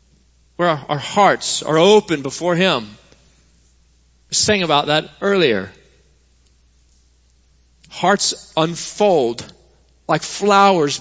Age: 40-59